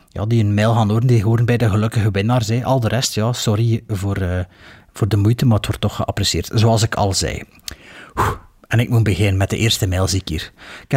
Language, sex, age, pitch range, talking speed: Dutch, male, 30-49, 110-150 Hz, 245 wpm